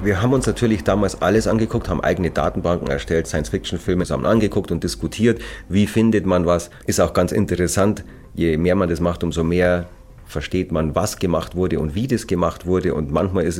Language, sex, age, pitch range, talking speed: German, male, 40-59, 85-110 Hz, 195 wpm